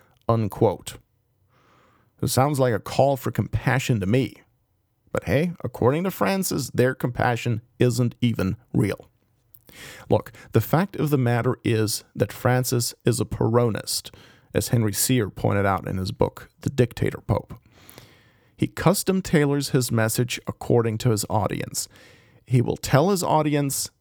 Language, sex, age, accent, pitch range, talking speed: English, male, 40-59, American, 110-130 Hz, 135 wpm